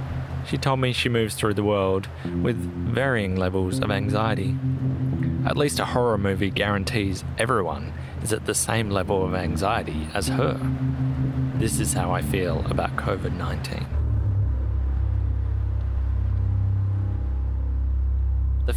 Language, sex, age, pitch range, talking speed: English, male, 30-49, 90-115 Hz, 120 wpm